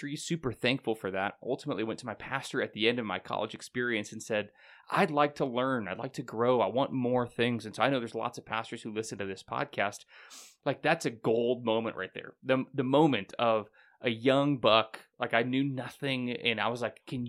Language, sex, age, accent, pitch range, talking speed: English, male, 20-39, American, 110-135 Hz, 230 wpm